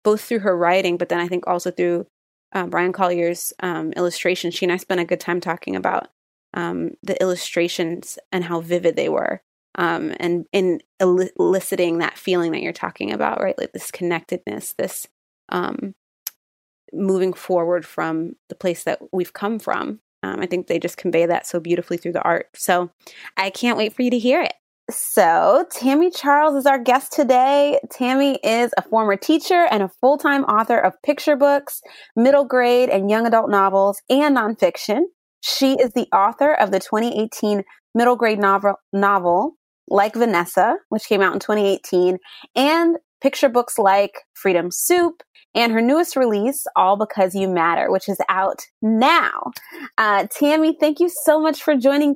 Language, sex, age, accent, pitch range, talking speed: English, female, 20-39, American, 180-270 Hz, 170 wpm